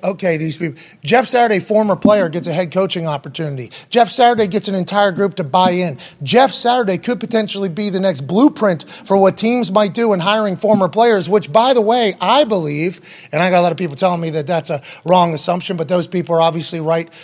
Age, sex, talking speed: 30-49, male, 225 wpm